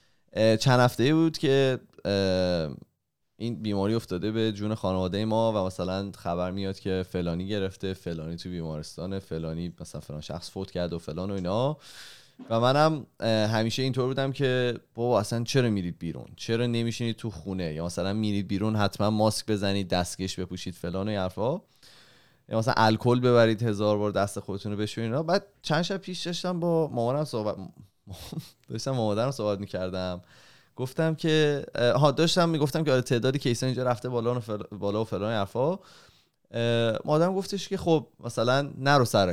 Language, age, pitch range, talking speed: Persian, 20-39, 100-130 Hz, 160 wpm